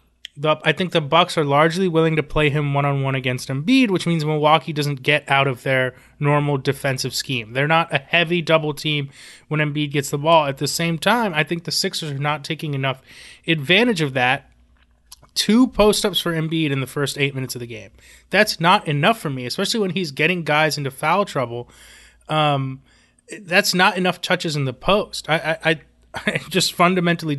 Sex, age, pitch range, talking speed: male, 20-39, 140-170 Hz, 195 wpm